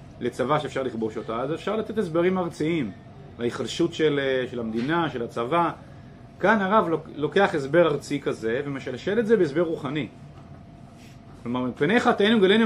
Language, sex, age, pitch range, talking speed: Hebrew, male, 30-49, 125-170 Hz, 140 wpm